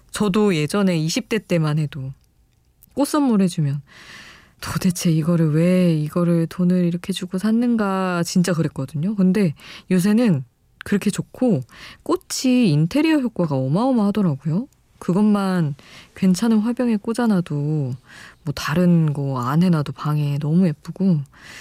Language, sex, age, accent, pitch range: Korean, female, 20-39, native, 150-200 Hz